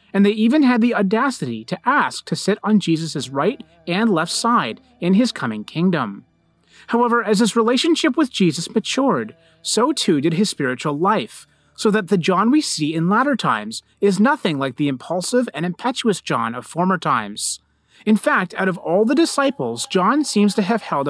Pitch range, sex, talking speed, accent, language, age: 160-235 Hz, male, 185 wpm, American, English, 30-49